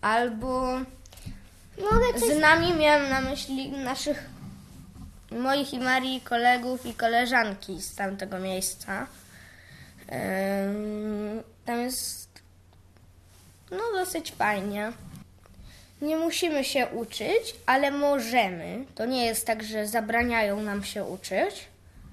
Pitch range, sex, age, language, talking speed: 210-270 Hz, female, 20-39, Polish, 100 wpm